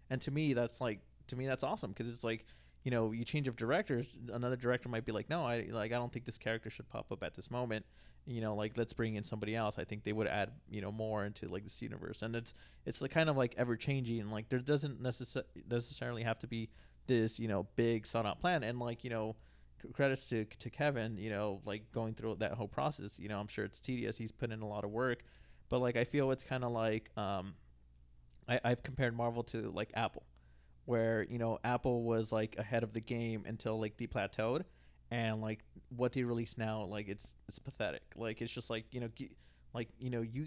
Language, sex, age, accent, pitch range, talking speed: English, male, 20-39, American, 110-125 Hz, 230 wpm